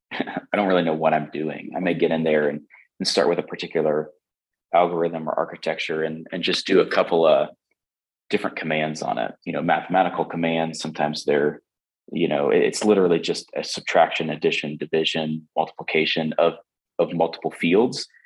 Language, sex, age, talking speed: English, male, 30-49, 170 wpm